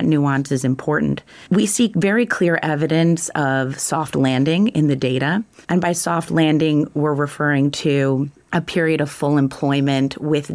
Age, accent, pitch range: 30-49, American, 135-165 Hz